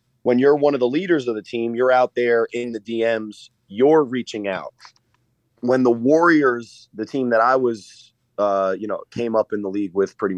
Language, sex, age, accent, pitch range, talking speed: English, male, 30-49, American, 110-140 Hz, 210 wpm